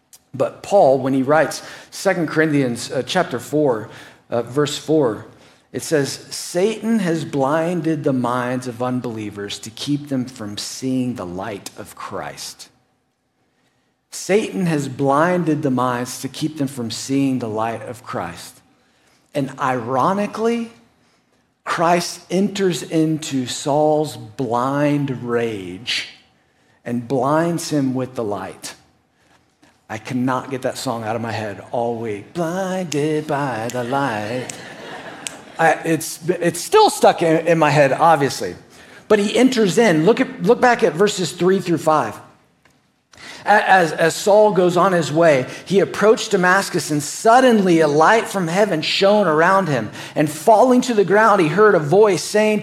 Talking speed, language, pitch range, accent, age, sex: 140 wpm, English, 130-195 Hz, American, 50-69, male